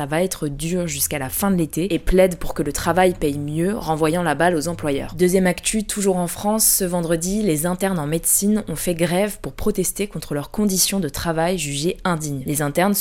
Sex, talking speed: female, 210 wpm